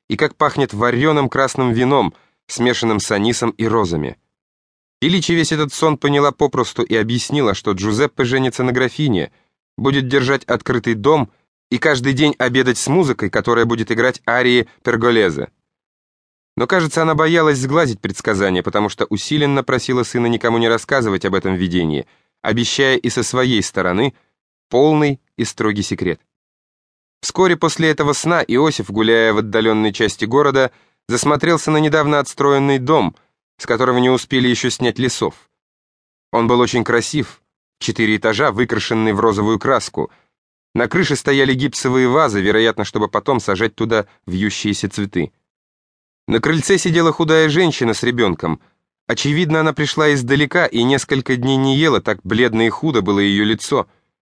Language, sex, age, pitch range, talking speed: English, male, 20-39, 110-145 Hz, 145 wpm